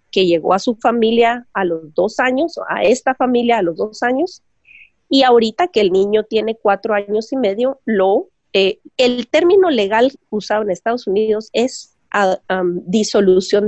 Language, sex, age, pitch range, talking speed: Spanish, female, 30-49, 195-255 Hz, 160 wpm